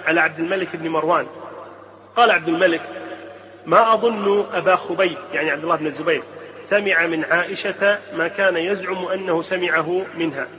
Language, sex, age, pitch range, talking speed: Arabic, male, 30-49, 165-195 Hz, 145 wpm